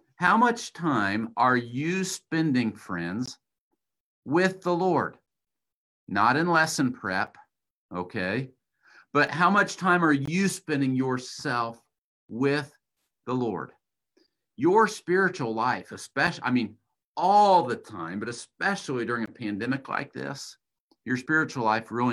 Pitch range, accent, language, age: 105-140 Hz, American, English, 50-69